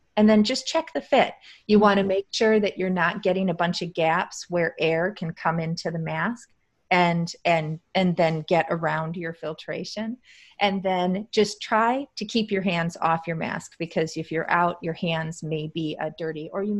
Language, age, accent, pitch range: English, 30-49, American, 165-200 Hz